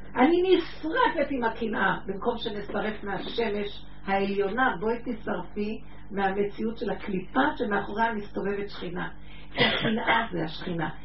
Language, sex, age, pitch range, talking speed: Hebrew, female, 50-69, 195-260 Hz, 105 wpm